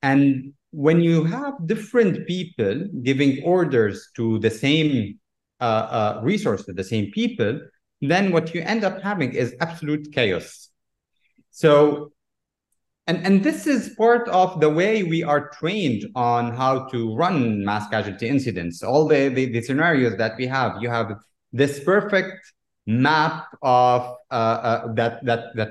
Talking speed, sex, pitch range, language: 150 wpm, male, 115-155 Hz, English